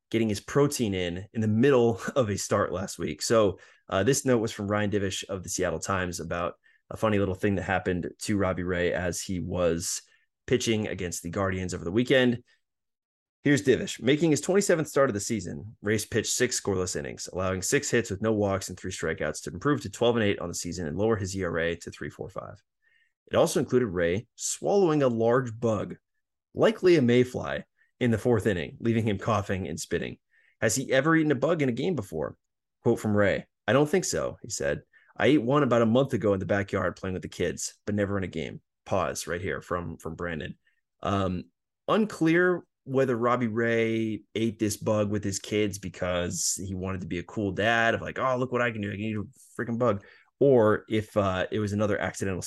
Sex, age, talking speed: male, 20-39, 215 wpm